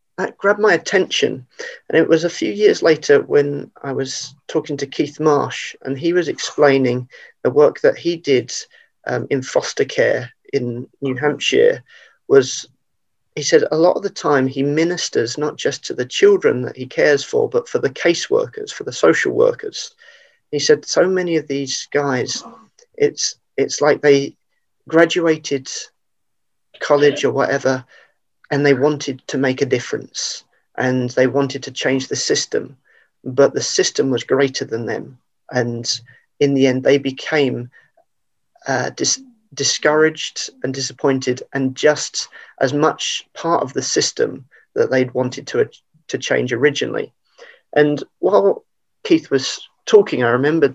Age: 40-59